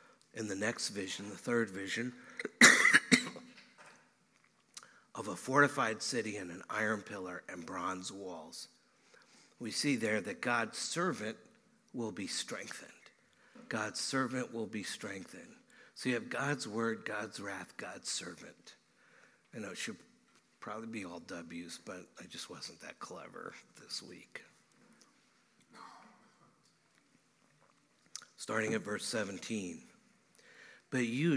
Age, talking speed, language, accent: 60-79, 120 wpm, English, American